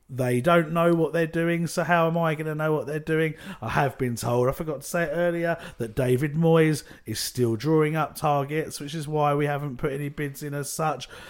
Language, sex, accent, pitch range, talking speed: English, male, British, 140-170 Hz, 240 wpm